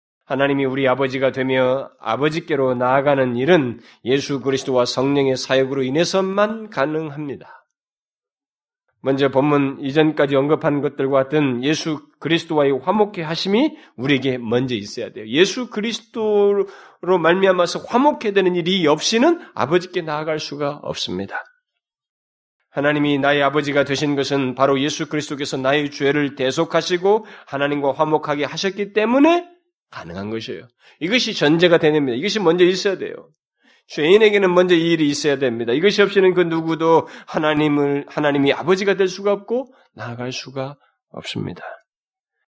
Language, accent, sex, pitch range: Korean, native, male, 135-180 Hz